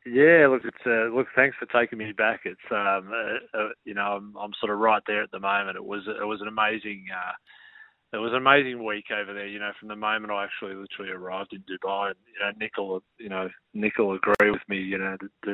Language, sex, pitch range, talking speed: English, male, 100-110 Hz, 245 wpm